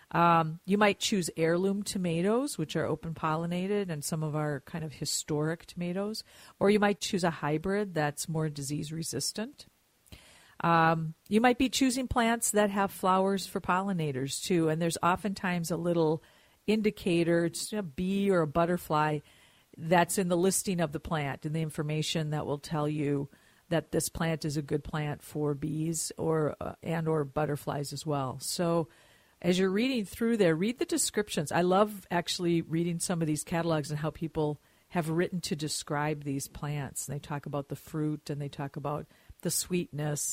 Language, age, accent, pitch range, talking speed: English, 50-69, American, 150-185 Hz, 175 wpm